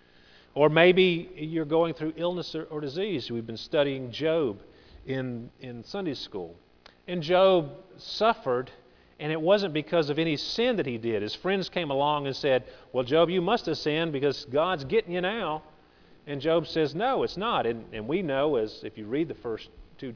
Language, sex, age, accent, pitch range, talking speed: English, male, 40-59, American, 105-165 Hz, 190 wpm